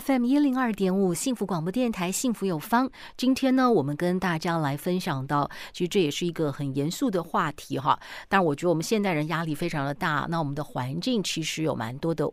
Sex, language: female, Chinese